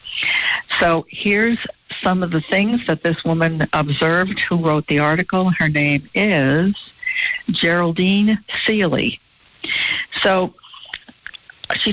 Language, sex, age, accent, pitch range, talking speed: English, female, 60-79, American, 150-180 Hz, 105 wpm